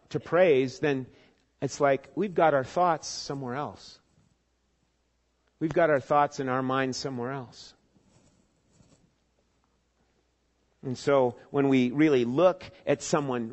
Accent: American